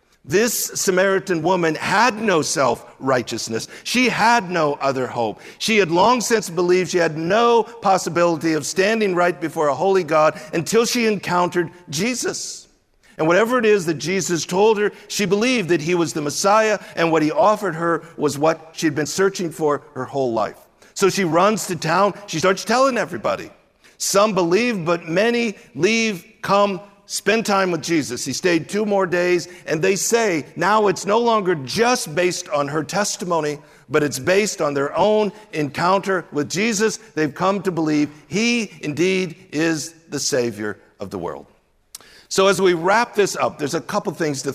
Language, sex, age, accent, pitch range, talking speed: English, male, 50-69, American, 160-205 Hz, 175 wpm